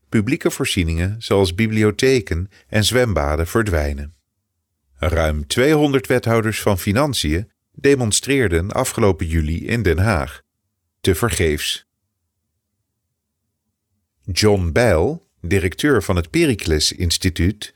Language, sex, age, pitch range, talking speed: English, male, 40-59, 85-110 Hz, 90 wpm